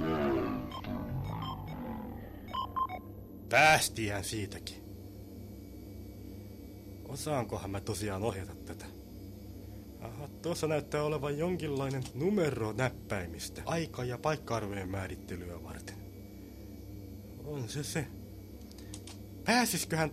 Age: 30-49